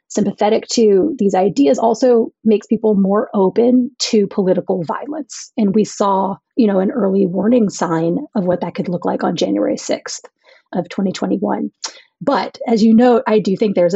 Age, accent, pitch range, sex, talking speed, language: 30-49, American, 195-255 Hz, female, 170 wpm, English